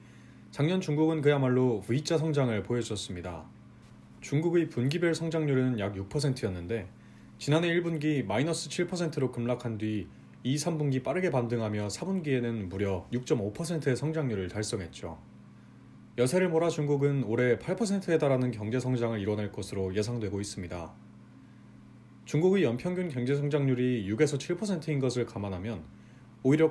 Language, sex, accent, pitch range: Korean, male, native, 100-155 Hz